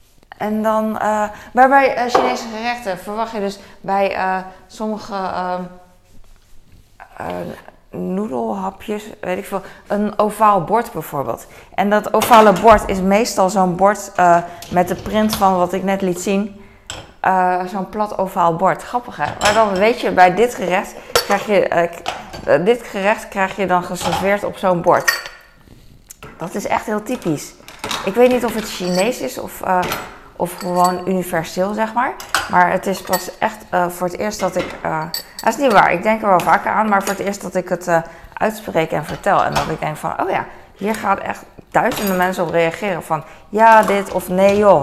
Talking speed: 190 wpm